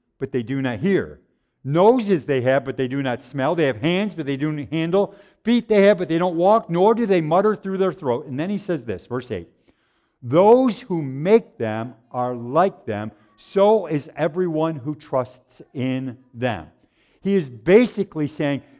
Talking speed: 190 wpm